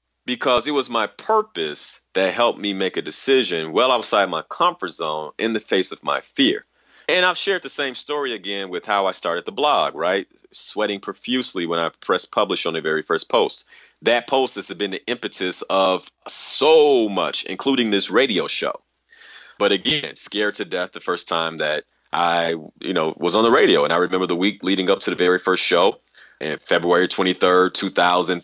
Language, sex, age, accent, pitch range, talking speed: English, male, 30-49, American, 80-110 Hz, 195 wpm